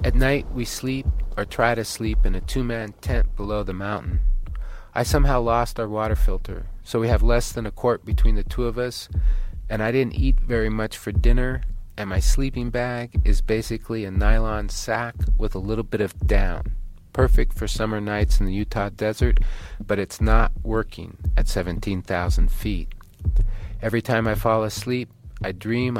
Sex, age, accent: male, 40-59, American